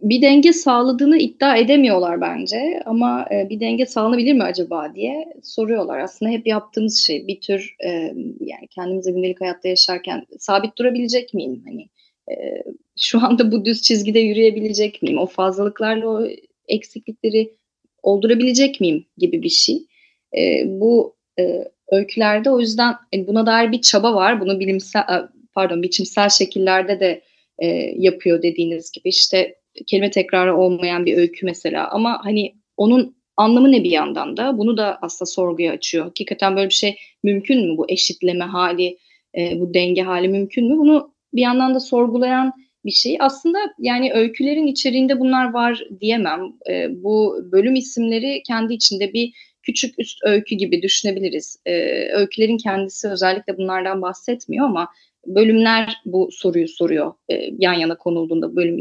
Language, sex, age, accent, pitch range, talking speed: Turkish, female, 30-49, native, 185-250 Hz, 145 wpm